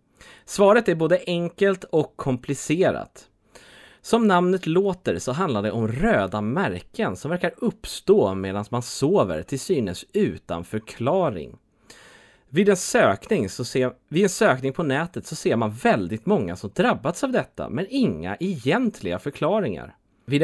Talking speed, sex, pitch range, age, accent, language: 130 wpm, male, 105-170 Hz, 30-49, Swedish, English